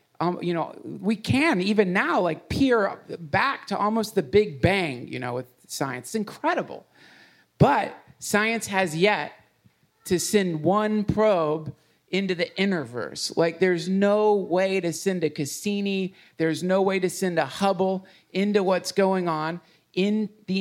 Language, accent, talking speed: English, American, 155 wpm